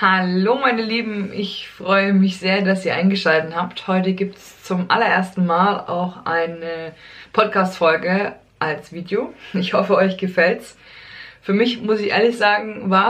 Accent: German